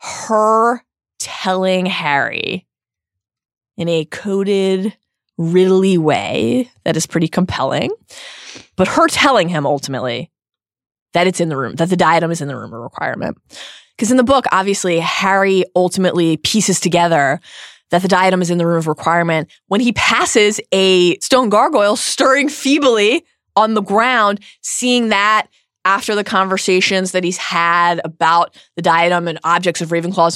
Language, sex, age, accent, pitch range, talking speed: English, female, 20-39, American, 170-220 Hz, 150 wpm